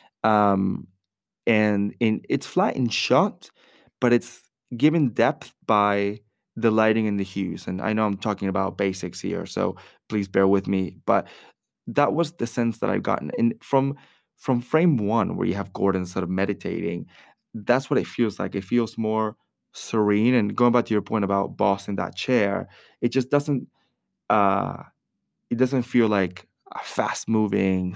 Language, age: English, 20-39